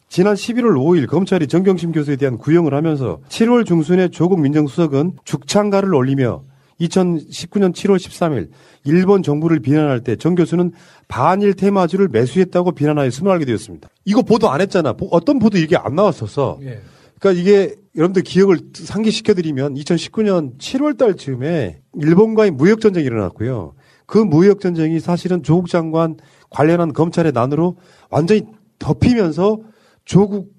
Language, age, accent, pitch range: English, 40-59, Korean, 145-200 Hz